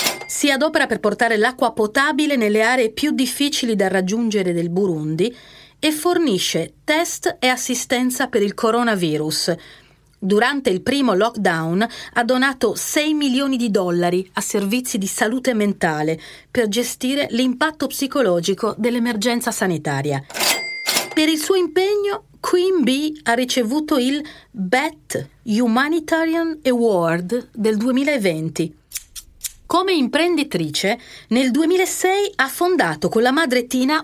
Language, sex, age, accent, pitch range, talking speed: Italian, female, 40-59, native, 180-275 Hz, 120 wpm